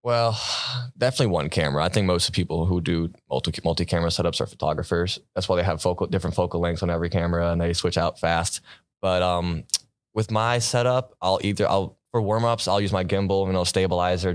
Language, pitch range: English, 85-100 Hz